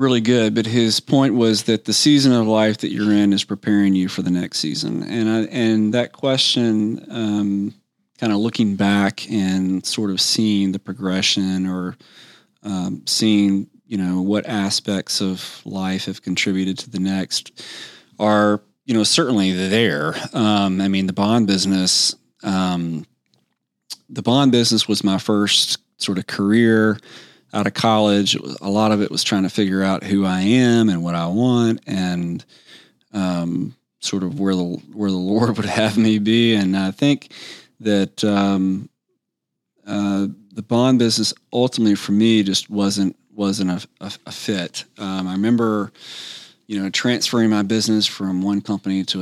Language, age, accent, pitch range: English, 30-49, American, 95-110 Hz